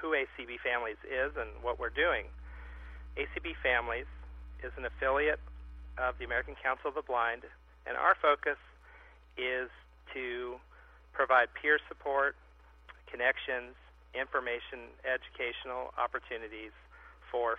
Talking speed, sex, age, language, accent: 115 wpm, male, 40-59, English, American